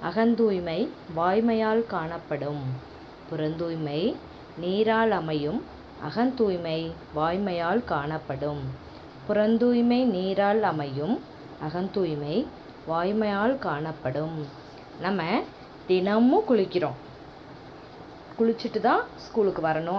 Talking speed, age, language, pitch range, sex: 70 wpm, 20-39, English, 160-225 Hz, female